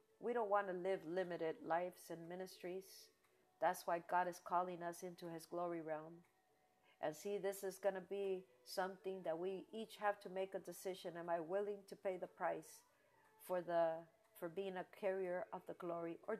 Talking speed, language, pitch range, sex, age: 185 wpm, English, 180-215 Hz, female, 50-69